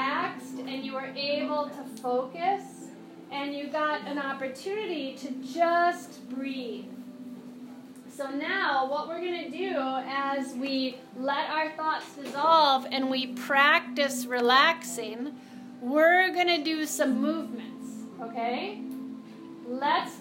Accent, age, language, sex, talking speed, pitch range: American, 30-49, English, female, 115 wpm, 260-330 Hz